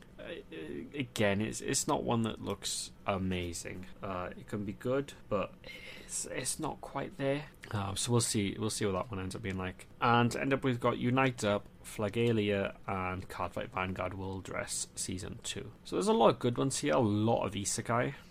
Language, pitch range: English, 95-115 Hz